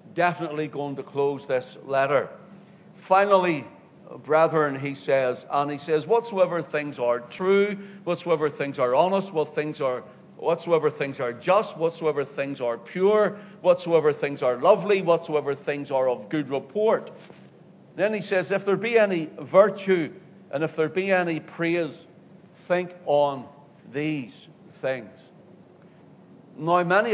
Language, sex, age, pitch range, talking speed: English, male, 60-79, 150-190 Hz, 135 wpm